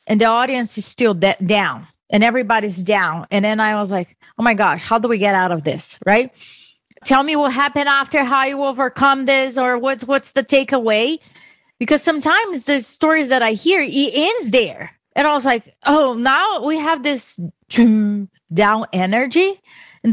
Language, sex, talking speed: English, female, 185 wpm